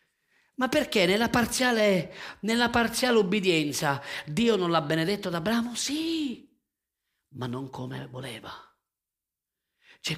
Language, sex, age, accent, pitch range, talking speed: Italian, male, 40-59, native, 120-185 Hz, 110 wpm